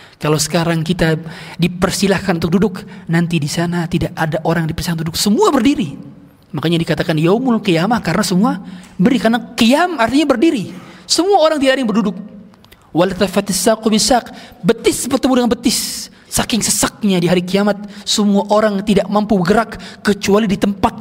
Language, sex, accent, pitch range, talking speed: Indonesian, male, native, 165-220 Hz, 145 wpm